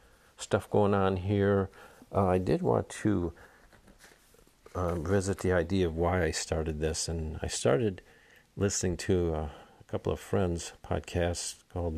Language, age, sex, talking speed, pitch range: English, 50-69, male, 150 wpm, 85-95 Hz